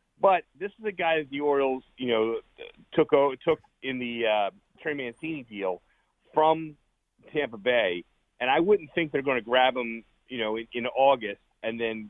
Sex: male